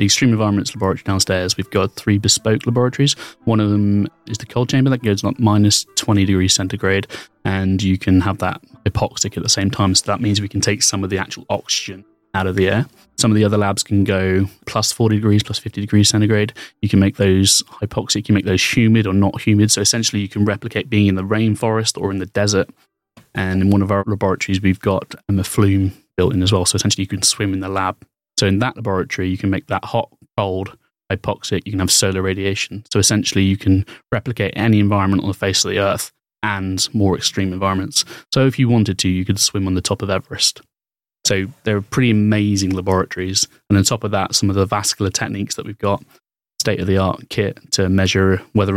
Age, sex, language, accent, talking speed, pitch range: 20-39, male, English, British, 225 wpm, 95-110 Hz